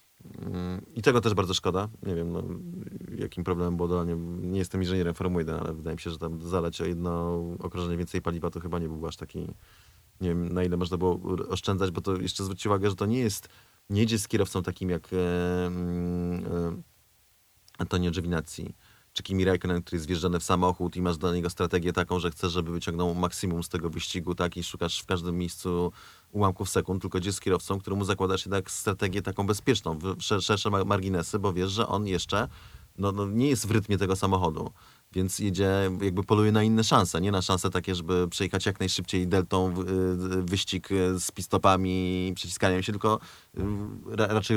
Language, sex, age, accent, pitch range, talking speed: Polish, male, 30-49, native, 90-100 Hz, 190 wpm